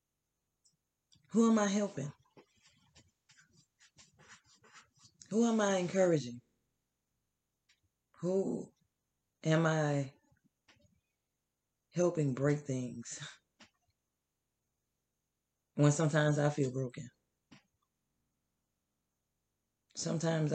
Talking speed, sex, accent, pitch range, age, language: 60 wpm, female, American, 135-175 Hz, 20-39, English